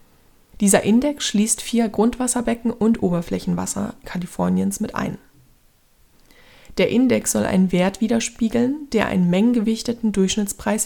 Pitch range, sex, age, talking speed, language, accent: 190-235 Hz, female, 20-39, 110 wpm, German, German